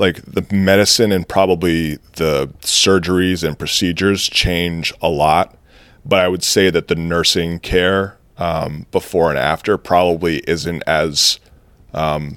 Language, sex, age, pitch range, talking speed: English, male, 30-49, 75-90 Hz, 135 wpm